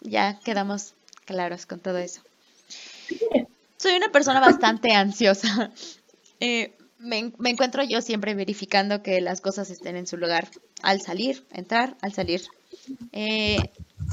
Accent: Mexican